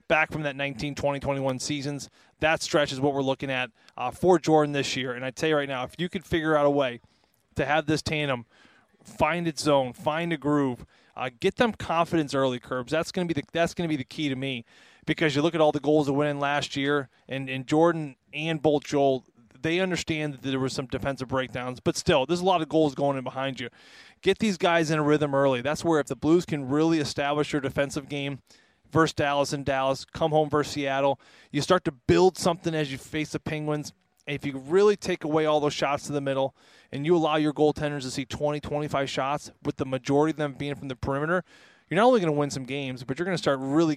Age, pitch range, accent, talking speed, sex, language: 20-39, 135-160 Hz, American, 245 wpm, male, English